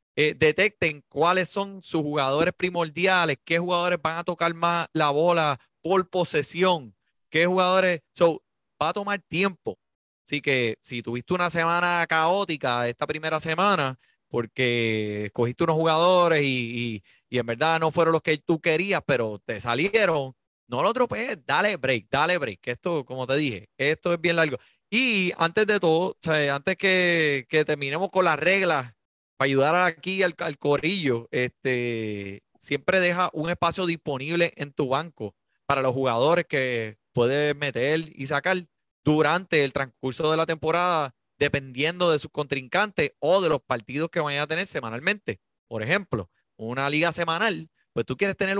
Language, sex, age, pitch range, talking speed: Spanish, male, 30-49, 130-175 Hz, 160 wpm